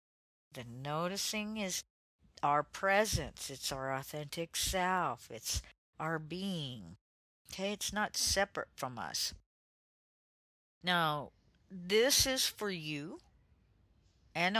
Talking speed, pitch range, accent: 100 wpm, 145-200 Hz, American